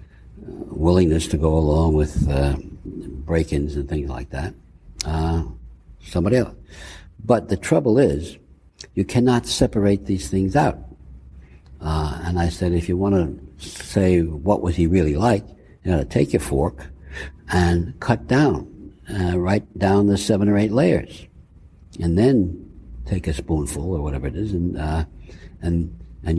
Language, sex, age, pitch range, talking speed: English, male, 60-79, 75-90 Hz, 155 wpm